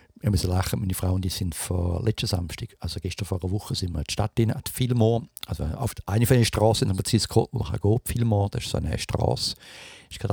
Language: English